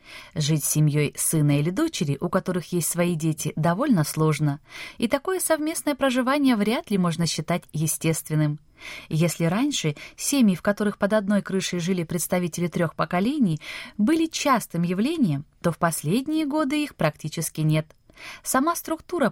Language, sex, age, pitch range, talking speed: Russian, female, 20-39, 155-245 Hz, 145 wpm